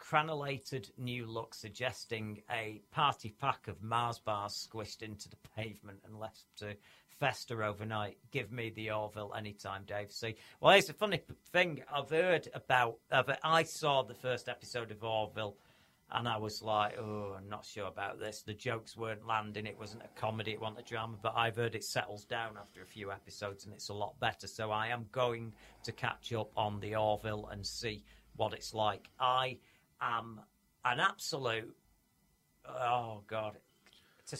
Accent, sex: British, male